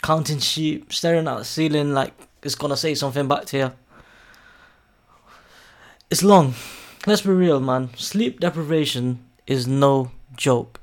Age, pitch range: 20-39, 130-165 Hz